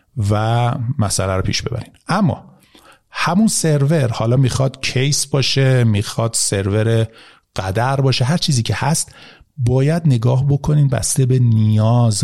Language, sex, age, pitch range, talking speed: Persian, male, 50-69, 115-150 Hz, 130 wpm